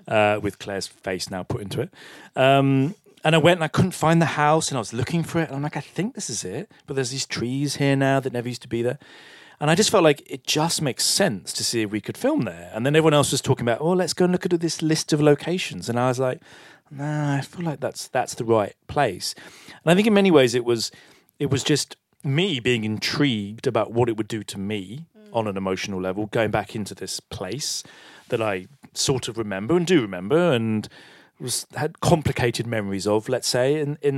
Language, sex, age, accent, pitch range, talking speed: English, male, 40-59, British, 115-155 Hz, 240 wpm